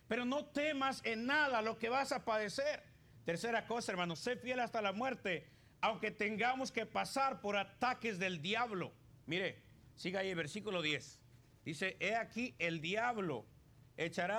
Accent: Mexican